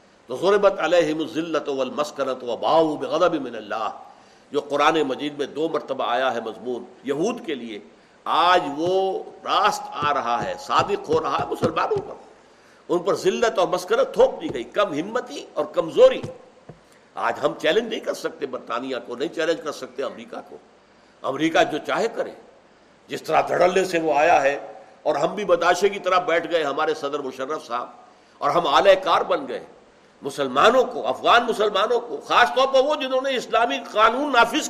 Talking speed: 175 wpm